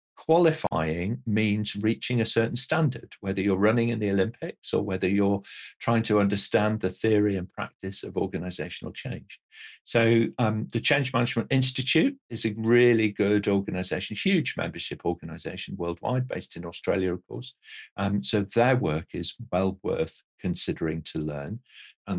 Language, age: English, 50-69